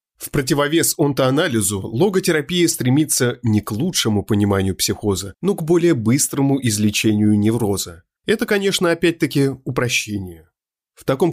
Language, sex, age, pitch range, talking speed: Russian, male, 30-49, 110-155 Hz, 115 wpm